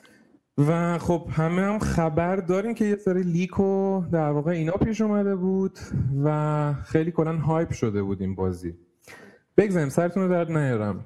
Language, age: Persian, 30-49